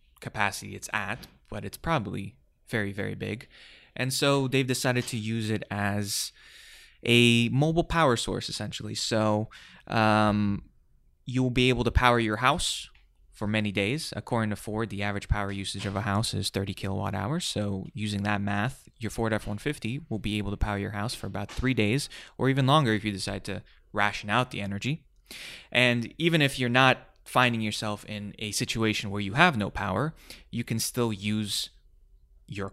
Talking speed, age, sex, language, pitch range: 180 wpm, 20-39, male, English, 100-120 Hz